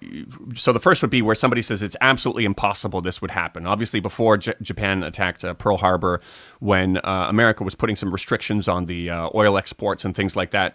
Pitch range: 90-110 Hz